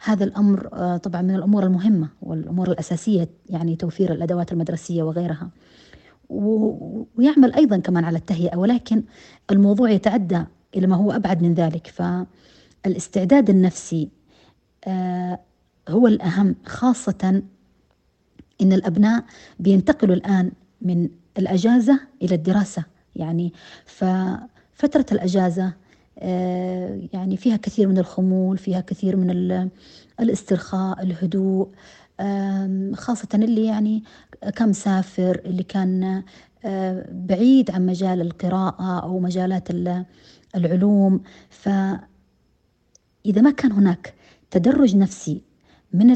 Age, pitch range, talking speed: 30-49, 180-205 Hz, 95 wpm